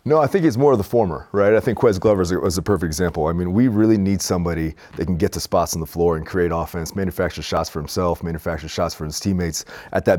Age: 30-49